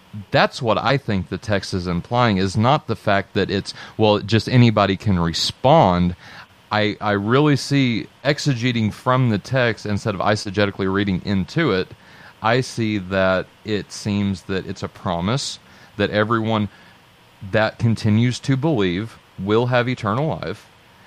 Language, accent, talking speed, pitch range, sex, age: English, American, 150 wpm, 95-115 Hz, male, 40-59